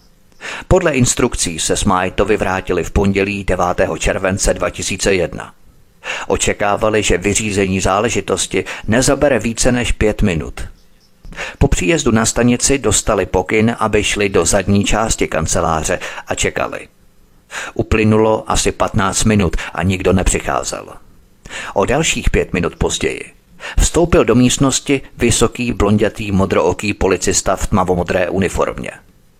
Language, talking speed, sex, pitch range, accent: Czech, 110 wpm, male, 95-120 Hz, native